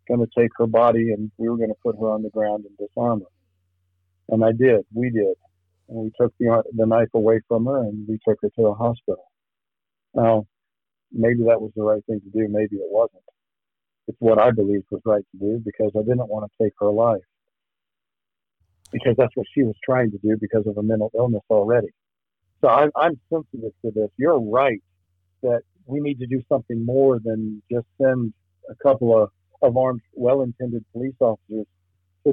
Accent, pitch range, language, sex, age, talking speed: American, 105-130 Hz, English, male, 50-69, 200 wpm